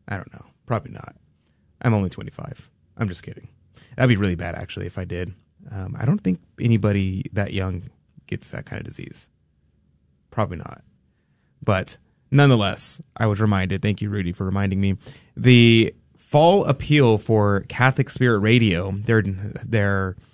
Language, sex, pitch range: English, male, 95-120 Hz